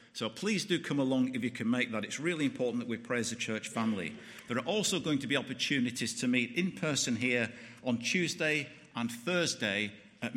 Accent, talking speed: British, 210 wpm